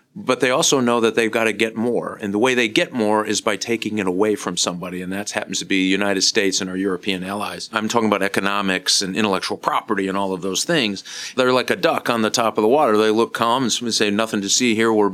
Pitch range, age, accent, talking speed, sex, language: 100-120 Hz, 40-59, American, 265 wpm, male, English